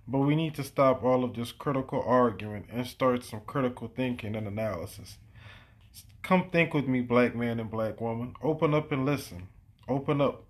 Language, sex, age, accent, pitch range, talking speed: English, male, 20-39, American, 110-140 Hz, 185 wpm